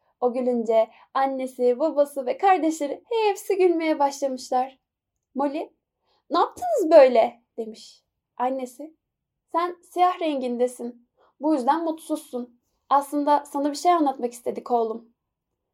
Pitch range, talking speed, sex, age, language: 255-335 Hz, 105 wpm, female, 10-29, Turkish